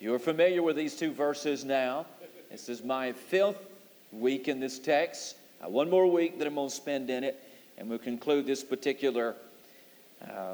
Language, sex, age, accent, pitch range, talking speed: English, male, 50-69, American, 130-170 Hz, 175 wpm